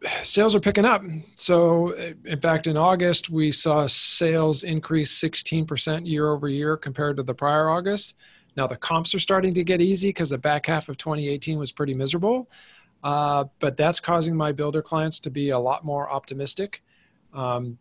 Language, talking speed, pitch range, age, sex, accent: English, 180 wpm, 125-155 Hz, 40-59, male, American